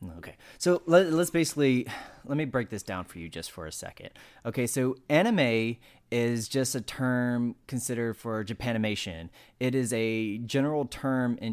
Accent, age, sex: American, 30-49, male